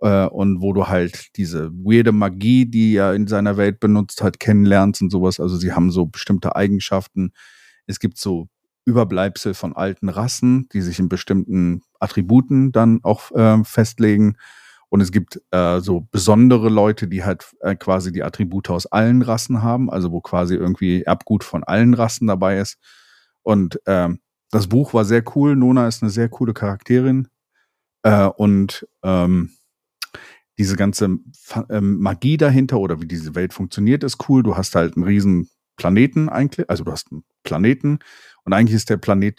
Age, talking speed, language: 40-59, 170 wpm, German